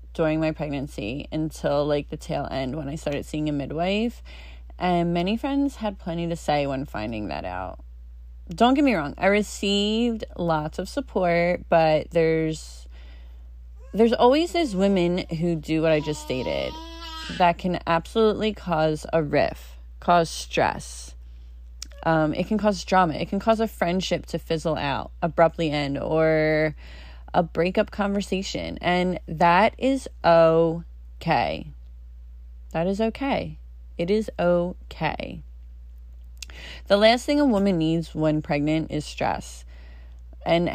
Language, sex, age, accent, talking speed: English, female, 30-49, American, 140 wpm